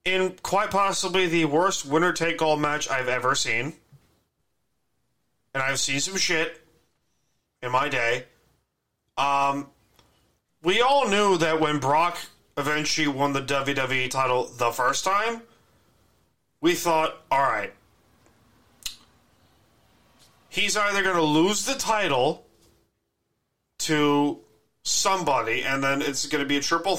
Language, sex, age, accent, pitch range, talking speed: English, male, 30-49, American, 130-170 Hz, 120 wpm